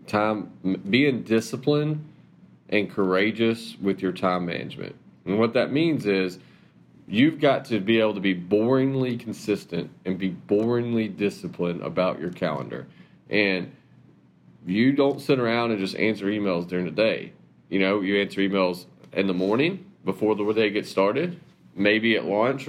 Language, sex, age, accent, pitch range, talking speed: English, male, 40-59, American, 100-125 Hz, 155 wpm